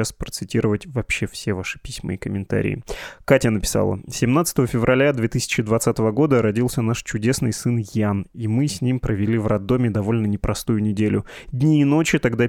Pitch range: 110-130 Hz